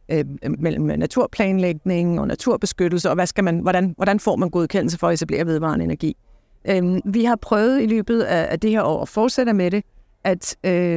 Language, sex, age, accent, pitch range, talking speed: Danish, female, 50-69, native, 175-205 Hz, 170 wpm